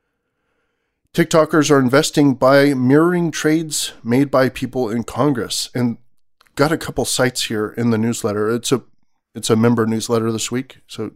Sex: male